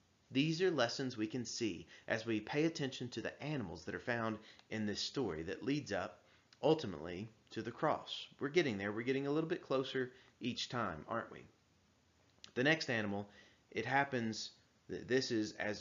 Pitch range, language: 105-135 Hz, English